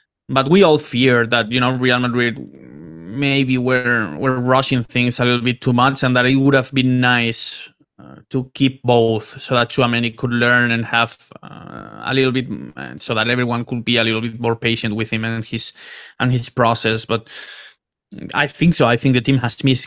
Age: 20-39